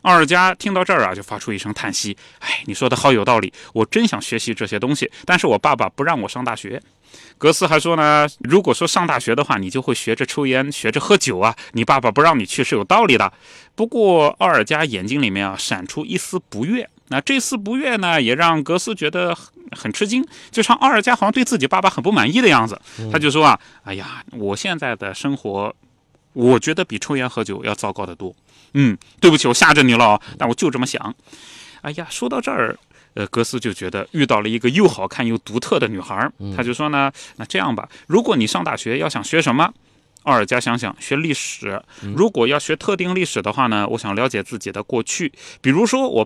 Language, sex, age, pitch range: Chinese, male, 30-49, 110-180 Hz